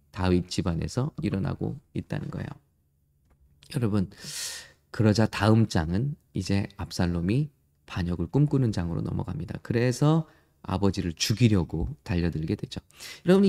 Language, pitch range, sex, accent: English, 95-145 Hz, male, Korean